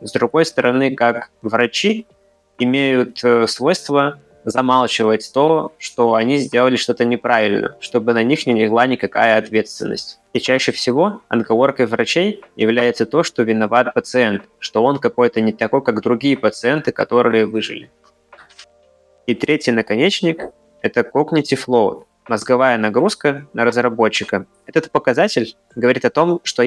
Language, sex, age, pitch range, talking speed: Russian, male, 20-39, 115-130 Hz, 135 wpm